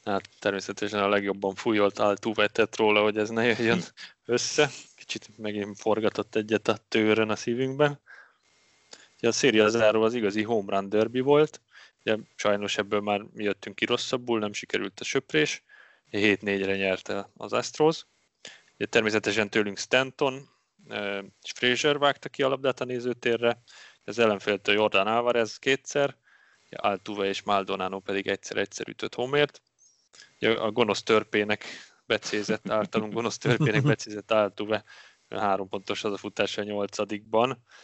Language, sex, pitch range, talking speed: Hungarian, male, 105-120 Hz, 140 wpm